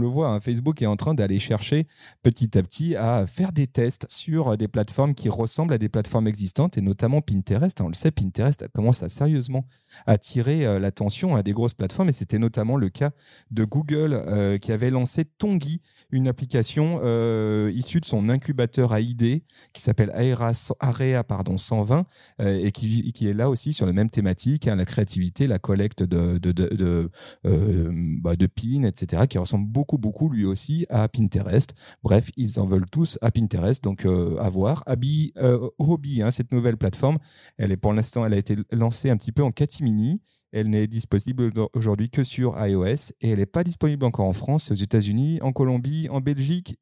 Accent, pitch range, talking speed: French, 105-140 Hz, 190 wpm